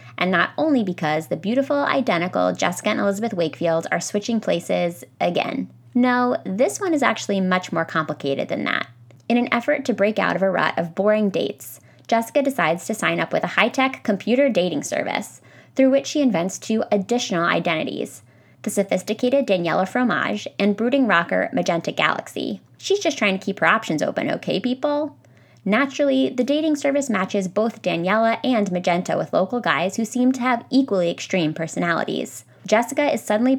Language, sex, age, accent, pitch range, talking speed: English, female, 20-39, American, 175-255 Hz, 170 wpm